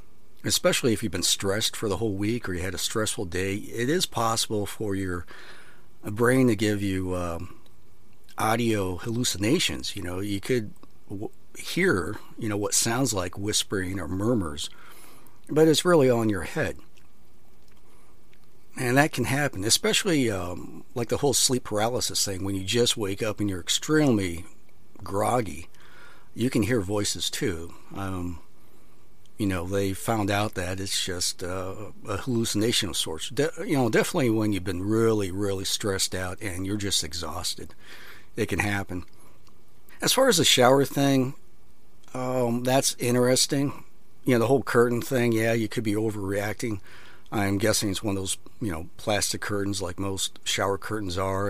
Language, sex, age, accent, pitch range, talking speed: English, male, 50-69, American, 95-120 Hz, 160 wpm